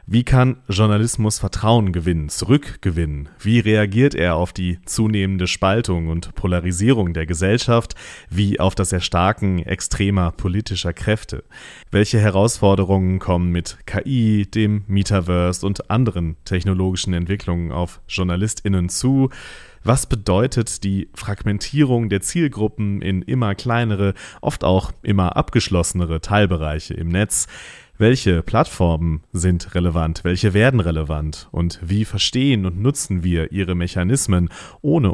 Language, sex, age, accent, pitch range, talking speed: German, male, 30-49, German, 90-110 Hz, 120 wpm